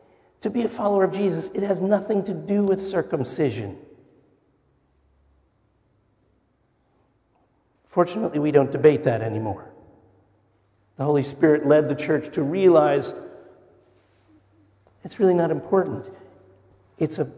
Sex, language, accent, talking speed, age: male, English, American, 110 wpm, 50-69